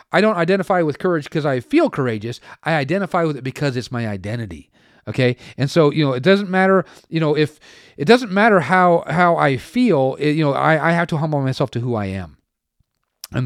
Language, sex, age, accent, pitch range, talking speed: English, male, 40-59, American, 130-185 Hz, 215 wpm